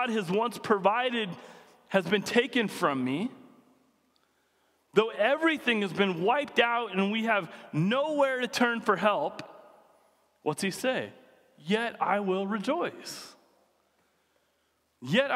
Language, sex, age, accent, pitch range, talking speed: English, male, 30-49, American, 150-220 Hz, 115 wpm